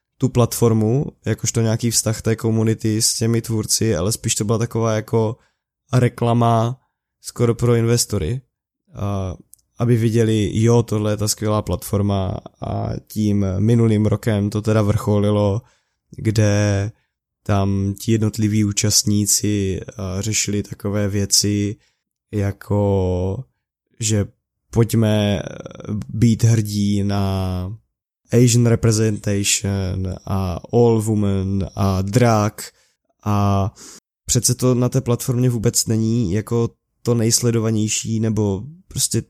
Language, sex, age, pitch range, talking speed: Czech, male, 20-39, 100-115 Hz, 105 wpm